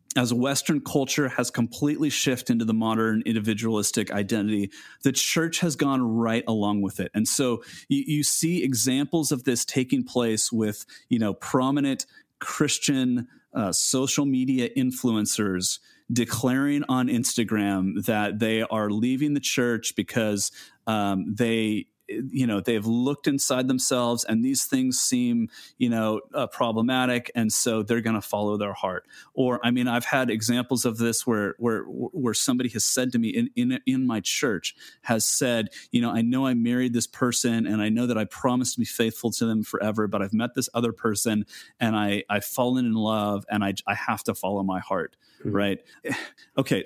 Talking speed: 175 wpm